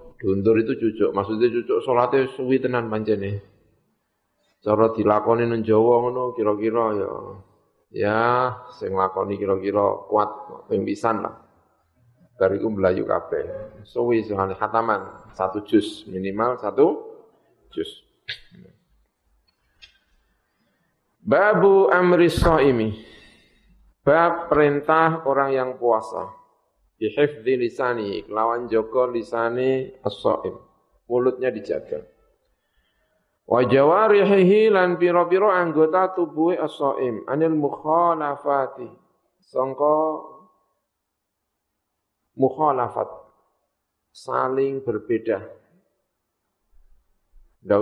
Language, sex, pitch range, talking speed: Indonesian, male, 110-170 Hz, 75 wpm